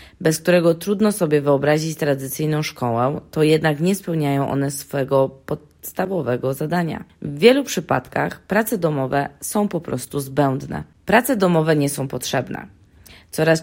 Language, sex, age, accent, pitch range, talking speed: Polish, female, 20-39, native, 140-180 Hz, 130 wpm